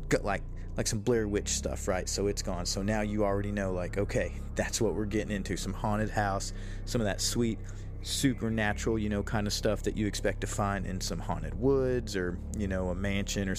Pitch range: 95-110 Hz